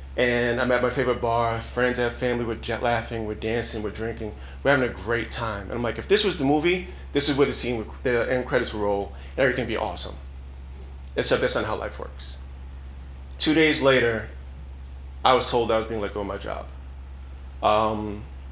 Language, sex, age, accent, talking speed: English, male, 30-49, American, 210 wpm